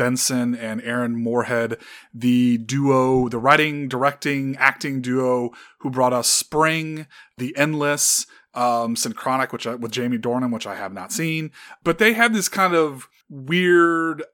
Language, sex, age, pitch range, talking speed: English, male, 30-49, 120-150 Hz, 150 wpm